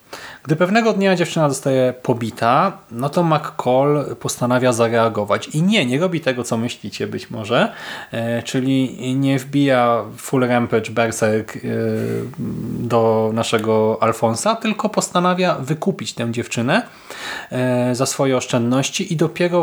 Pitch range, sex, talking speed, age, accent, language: 120-150 Hz, male, 130 wpm, 30-49, native, Polish